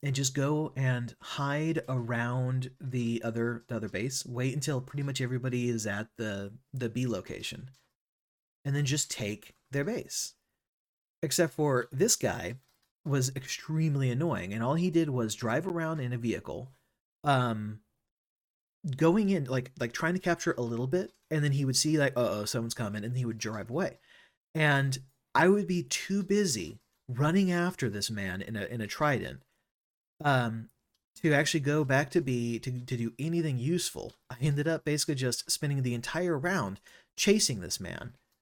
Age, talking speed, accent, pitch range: 30-49, 170 wpm, American, 120-155 Hz